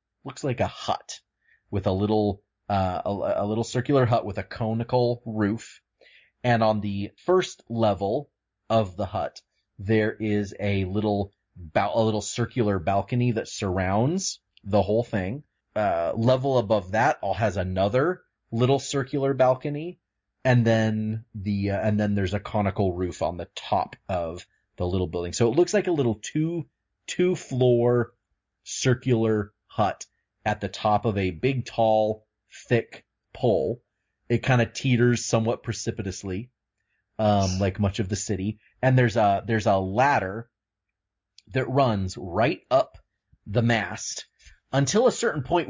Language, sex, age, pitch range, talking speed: English, male, 30-49, 100-120 Hz, 150 wpm